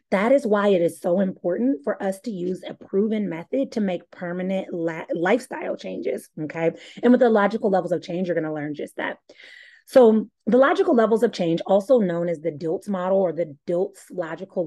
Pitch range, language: 170-220 Hz, English